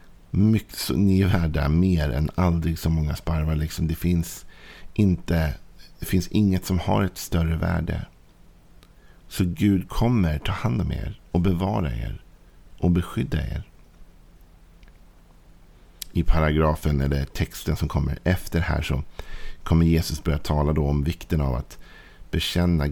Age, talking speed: 50-69, 140 wpm